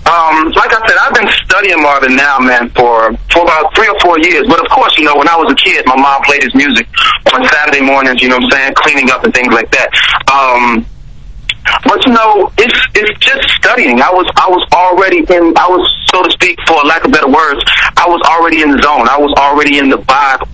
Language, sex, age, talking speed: English, male, 30-49, 240 wpm